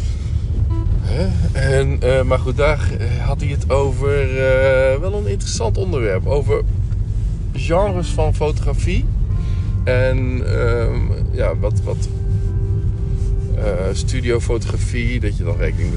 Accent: Dutch